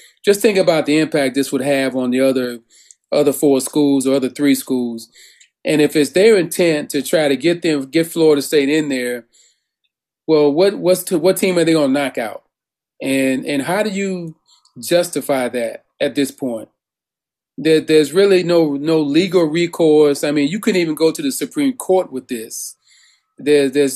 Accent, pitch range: American, 140-175 Hz